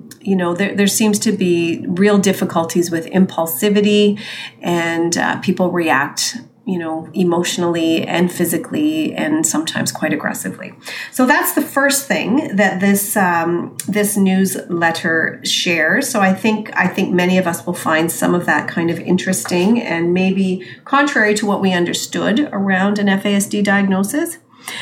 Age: 40-59